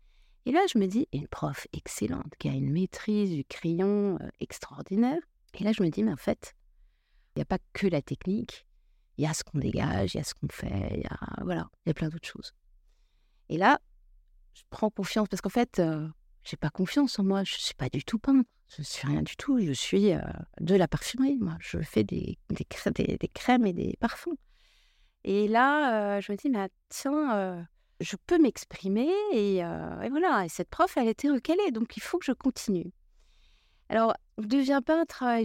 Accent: French